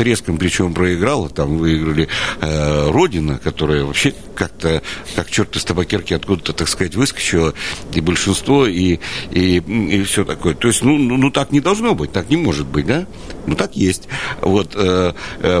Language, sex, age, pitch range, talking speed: Russian, male, 60-79, 85-120 Hz, 165 wpm